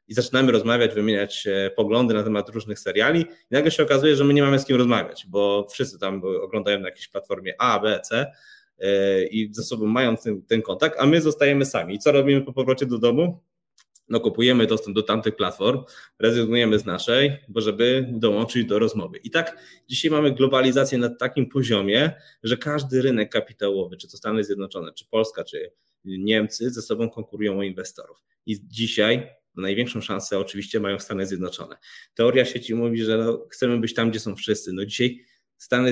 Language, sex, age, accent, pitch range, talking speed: Polish, male, 20-39, native, 105-135 Hz, 180 wpm